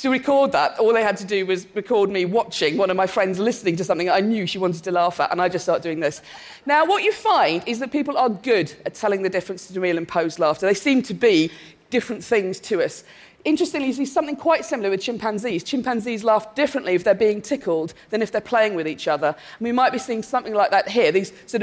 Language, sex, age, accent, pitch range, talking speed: English, female, 40-59, British, 195-295 Hz, 250 wpm